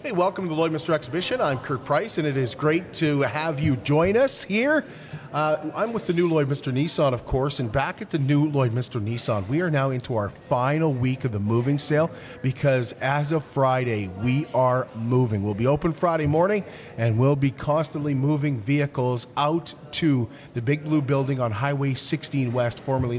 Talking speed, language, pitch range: 200 wpm, English, 125-165 Hz